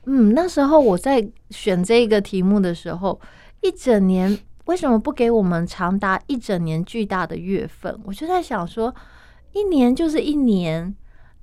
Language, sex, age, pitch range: Chinese, female, 30-49, 185-270 Hz